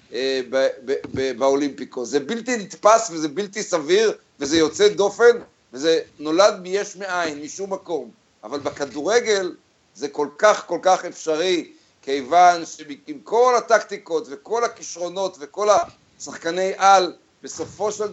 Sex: male